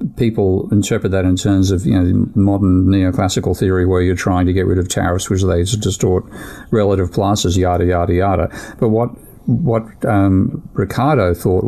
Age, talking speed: 50-69, 160 wpm